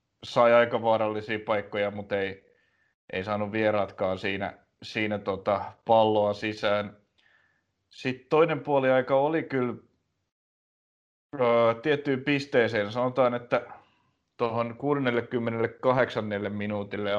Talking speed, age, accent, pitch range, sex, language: 95 wpm, 30-49, native, 100-120 Hz, male, Finnish